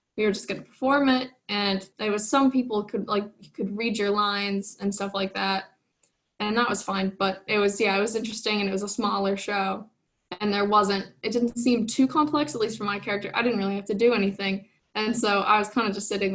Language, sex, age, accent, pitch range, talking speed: English, female, 10-29, American, 195-225 Hz, 250 wpm